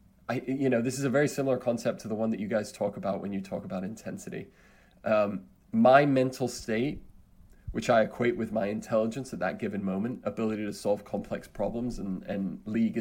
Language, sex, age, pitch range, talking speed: English, male, 20-39, 105-135 Hz, 205 wpm